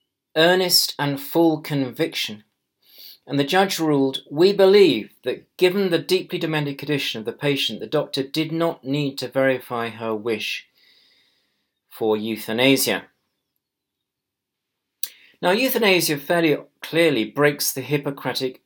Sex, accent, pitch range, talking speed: male, British, 125-165 Hz, 120 wpm